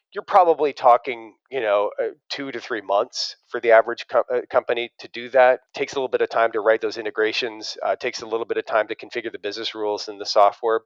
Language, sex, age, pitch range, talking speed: English, male, 40-59, 115-150 Hz, 225 wpm